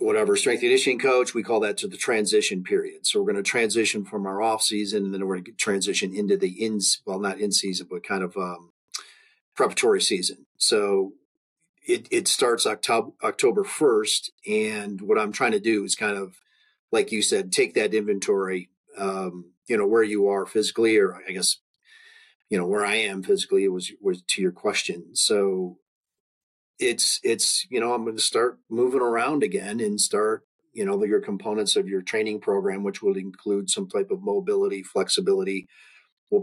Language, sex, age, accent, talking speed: English, male, 40-59, American, 190 wpm